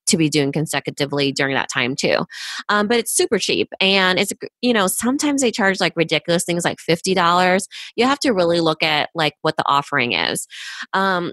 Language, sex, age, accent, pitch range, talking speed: English, female, 20-39, American, 150-190 Hz, 195 wpm